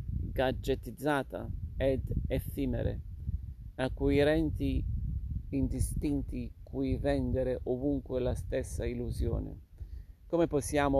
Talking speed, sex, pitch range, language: 70 wpm, male, 90-130 Hz, Italian